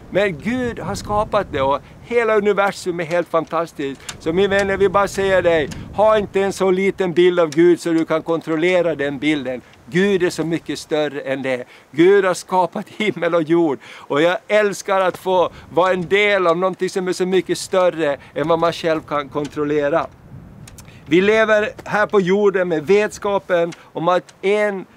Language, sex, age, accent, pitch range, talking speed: Swedish, male, 60-79, native, 160-195 Hz, 185 wpm